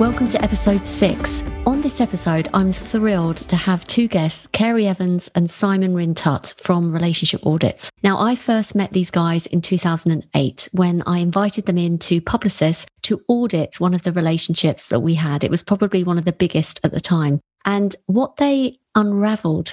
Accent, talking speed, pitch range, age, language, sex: British, 175 wpm, 165-195 Hz, 30-49, English, female